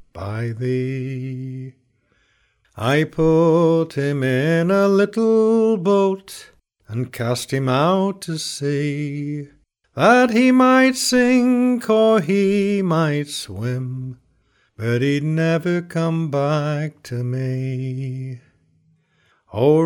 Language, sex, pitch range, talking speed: English, male, 130-195 Hz, 95 wpm